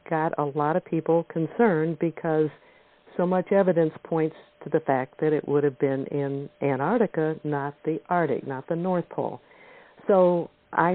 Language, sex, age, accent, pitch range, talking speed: English, female, 60-79, American, 145-180 Hz, 165 wpm